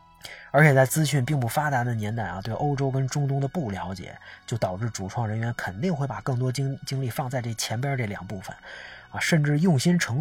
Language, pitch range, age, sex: Chinese, 110-155 Hz, 20-39, male